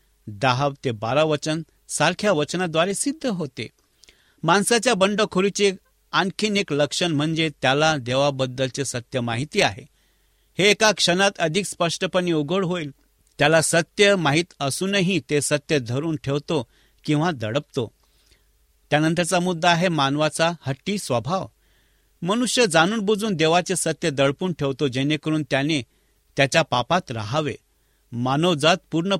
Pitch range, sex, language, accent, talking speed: 135-175 Hz, male, English, Indian, 110 wpm